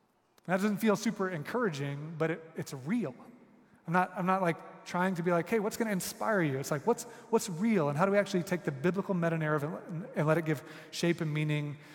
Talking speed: 235 wpm